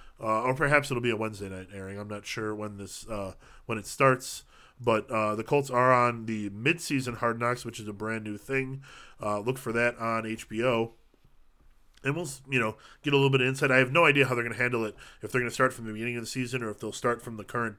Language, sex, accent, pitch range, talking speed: English, male, American, 110-130 Hz, 265 wpm